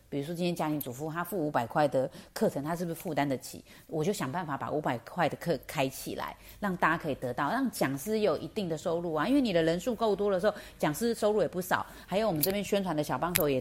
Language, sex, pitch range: Chinese, female, 150-210 Hz